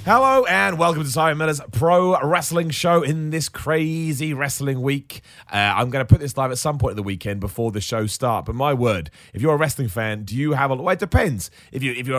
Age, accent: 30-49, British